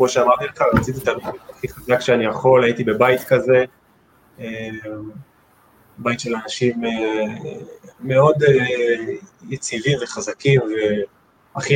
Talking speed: 95 wpm